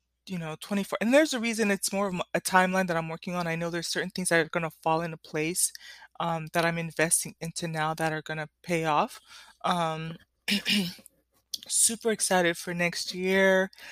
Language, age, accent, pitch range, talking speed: English, 20-39, American, 160-195 Hz, 200 wpm